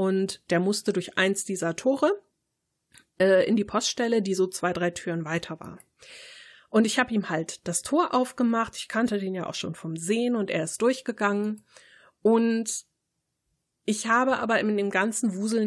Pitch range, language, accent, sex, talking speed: 180-230 Hz, German, German, female, 175 wpm